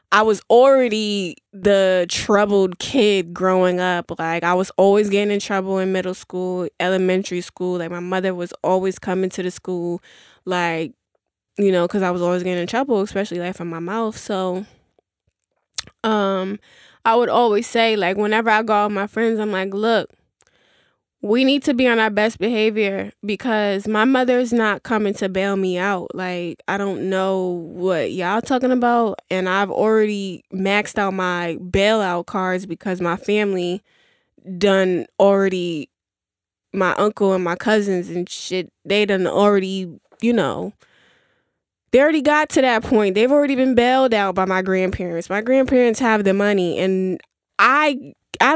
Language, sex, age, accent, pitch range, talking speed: English, female, 10-29, American, 180-225 Hz, 165 wpm